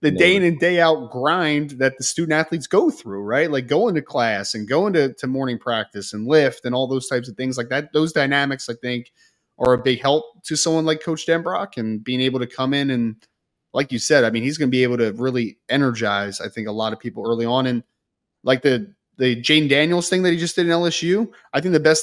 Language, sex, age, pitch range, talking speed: English, male, 20-39, 125-175 Hz, 255 wpm